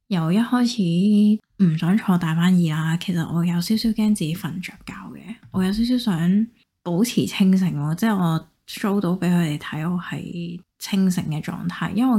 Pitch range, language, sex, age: 165-210 Hz, Chinese, female, 20-39